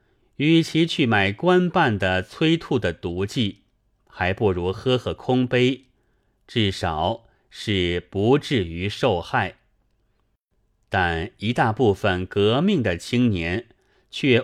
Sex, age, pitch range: male, 30-49, 95-125 Hz